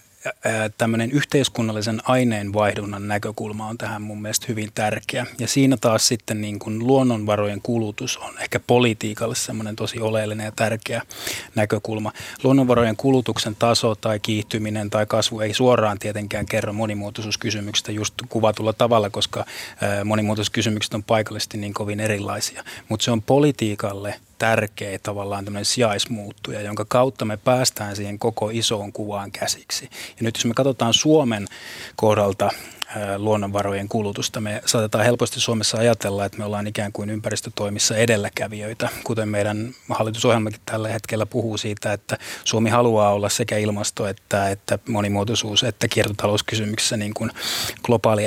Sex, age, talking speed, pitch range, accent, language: male, 30-49, 130 wpm, 105-115 Hz, native, Finnish